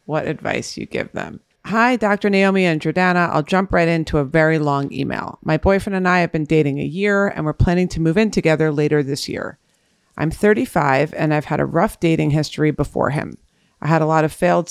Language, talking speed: English, 220 wpm